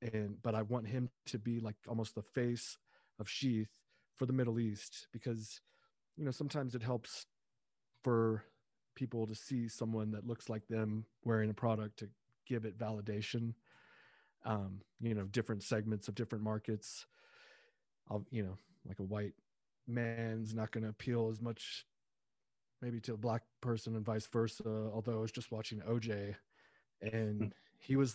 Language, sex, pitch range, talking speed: English, male, 110-120 Hz, 165 wpm